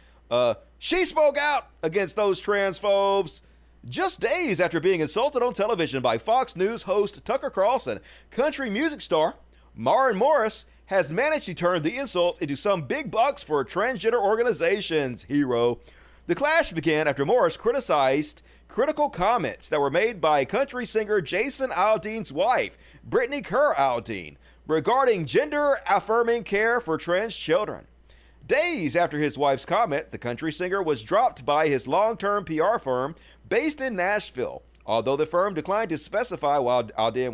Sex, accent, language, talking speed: male, American, English, 150 wpm